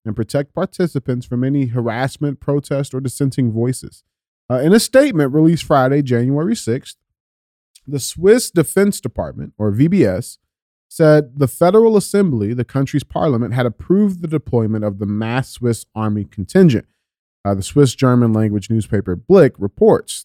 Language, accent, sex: English, American, male